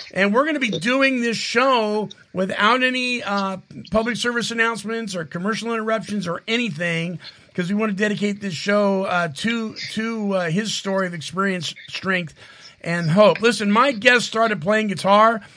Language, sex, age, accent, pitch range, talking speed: English, male, 50-69, American, 185-230 Hz, 165 wpm